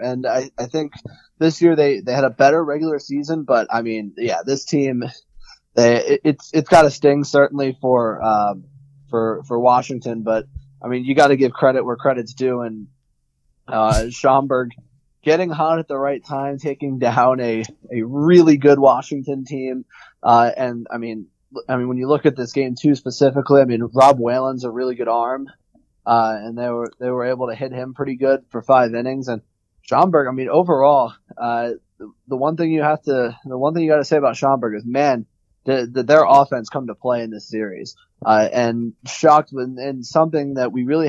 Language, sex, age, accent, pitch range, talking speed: English, male, 20-39, American, 115-140 Hz, 205 wpm